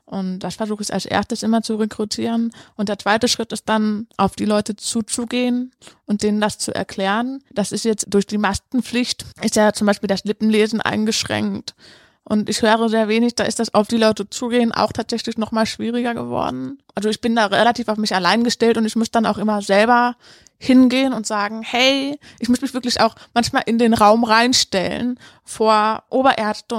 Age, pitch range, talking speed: 20-39, 205-235 Hz, 195 wpm